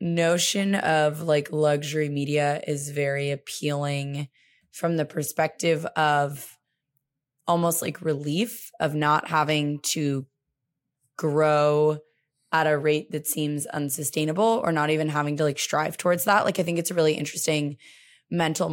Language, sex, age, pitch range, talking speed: English, female, 20-39, 145-170 Hz, 140 wpm